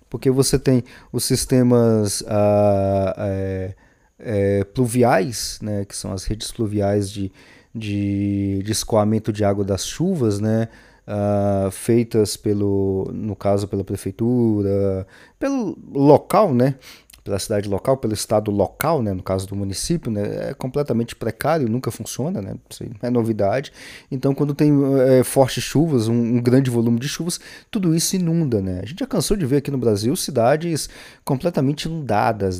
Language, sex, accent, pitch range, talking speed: Portuguese, male, Brazilian, 105-130 Hz, 145 wpm